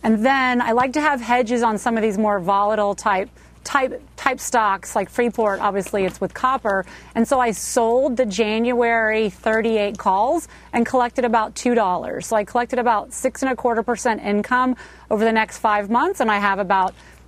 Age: 30-49